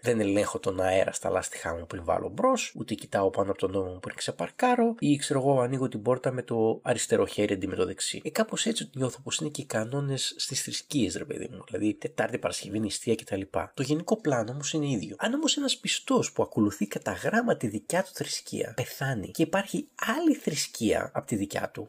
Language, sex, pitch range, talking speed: Greek, male, 120-185 Hz, 195 wpm